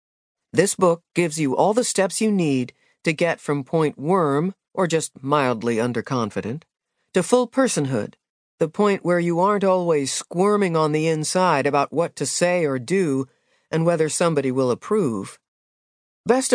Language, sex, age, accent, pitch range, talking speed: English, female, 50-69, American, 150-205 Hz, 155 wpm